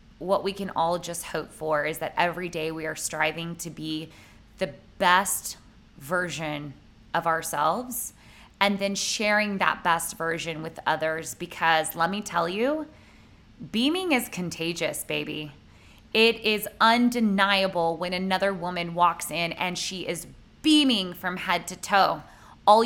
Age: 20-39